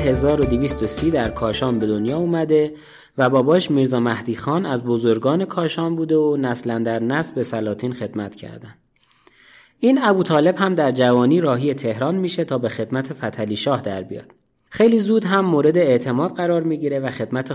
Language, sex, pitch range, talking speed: English, male, 125-170 Hz, 165 wpm